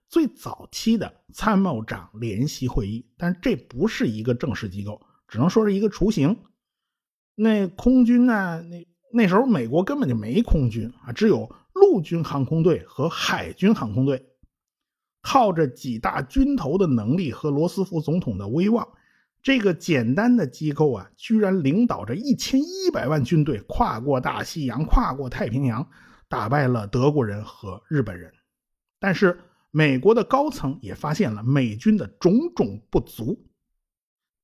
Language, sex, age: Chinese, male, 50-69